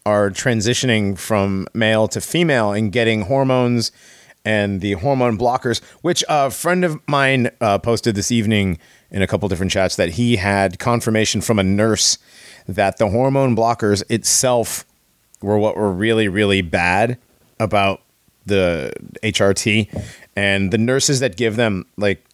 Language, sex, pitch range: English, male, 90-120 Hz